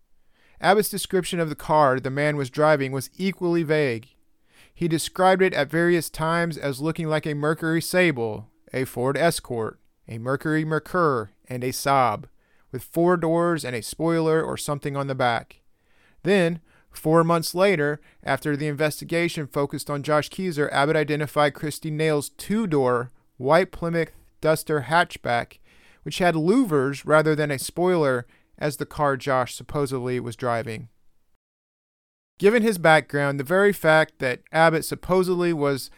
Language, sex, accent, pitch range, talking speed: English, male, American, 135-170 Hz, 145 wpm